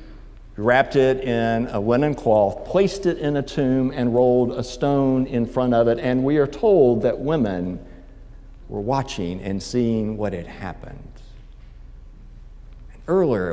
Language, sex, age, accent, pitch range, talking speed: English, male, 60-79, American, 95-135 Hz, 145 wpm